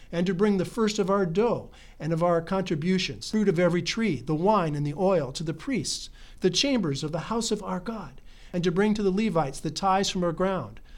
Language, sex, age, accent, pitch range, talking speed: English, male, 50-69, American, 145-195 Hz, 235 wpm